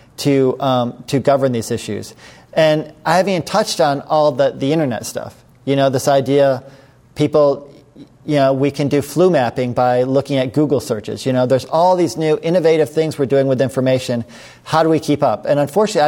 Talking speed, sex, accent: 200 wpm, male, American